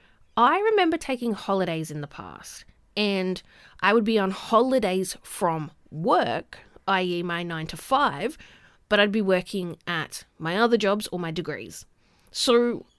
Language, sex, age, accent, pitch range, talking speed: English, female, 30-49, Australian, 175-265 Hz, 150 wpm